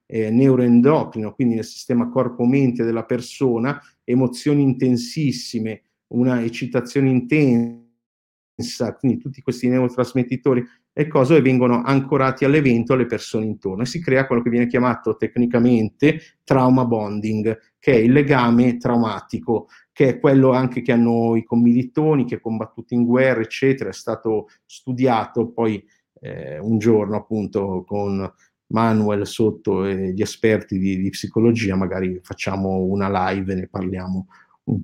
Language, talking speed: Italian, 135 wpm